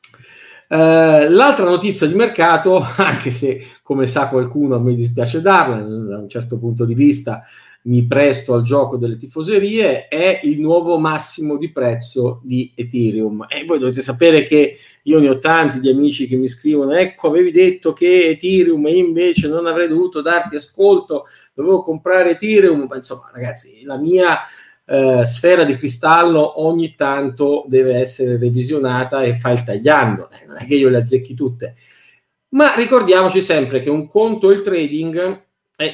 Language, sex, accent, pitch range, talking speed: Italian, male, native, 125-170 Hz, 160 wpm